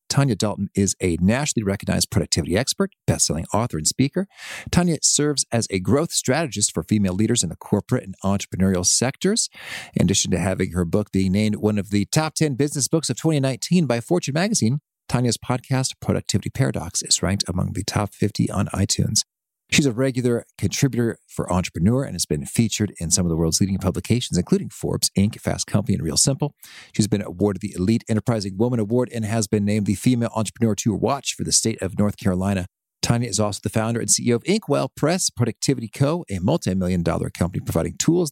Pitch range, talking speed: 100-140 Hz, 195 wpm